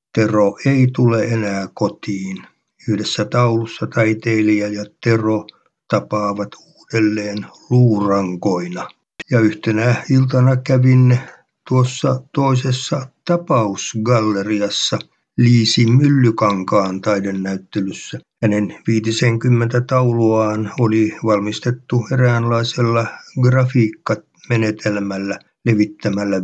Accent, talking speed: native, 70 wpm